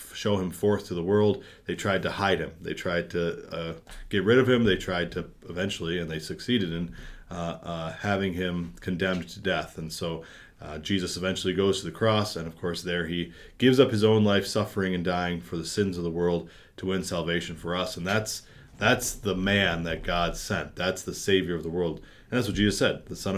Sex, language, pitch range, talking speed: male, English, 85-100 Hz, 225 wpm